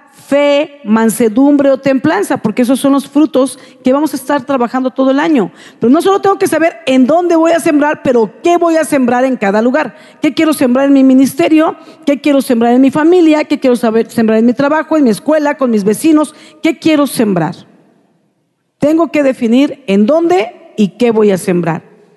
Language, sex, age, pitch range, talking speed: Spanish, female, 50-69, 235-310 Hz, 200 wpm